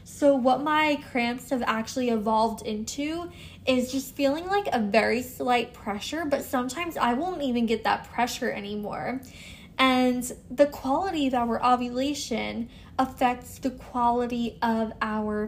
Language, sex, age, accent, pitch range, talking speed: English, female, 10-29, American, 225-275 Hz, 140 wpm